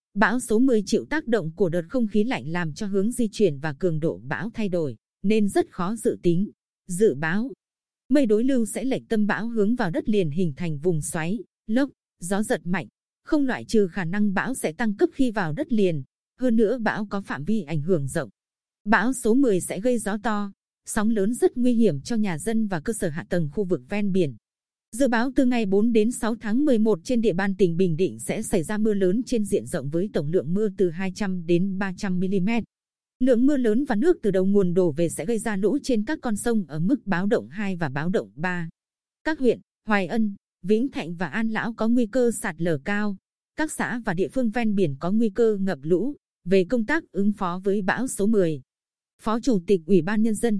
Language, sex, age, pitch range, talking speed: Vietnamese, female, 20-39, 185-230 Hz, 230 wpm